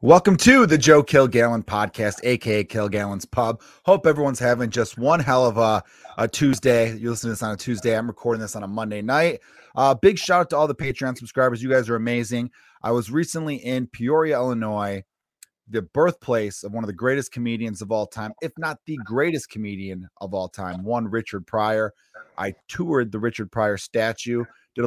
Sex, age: male, 30-49